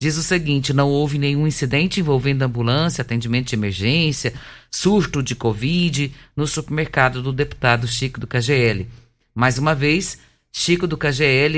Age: 50-69